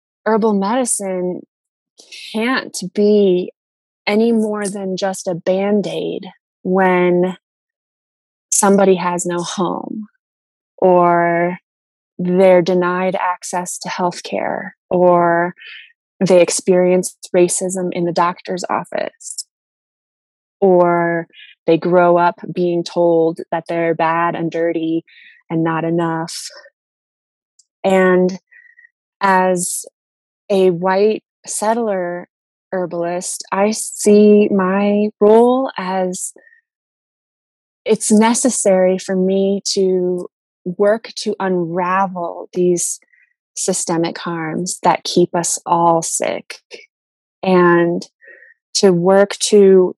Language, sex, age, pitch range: English, female, 20-39, 175-210 Hz